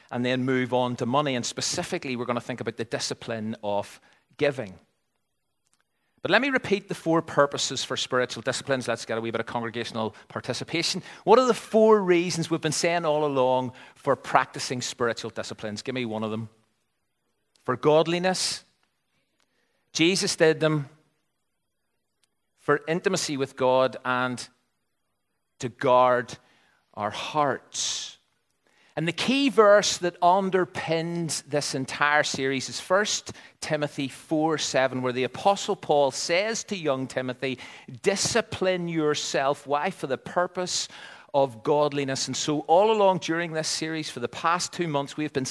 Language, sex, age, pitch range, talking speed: English, male, 40-59, 125-175 Hz, 150 wpm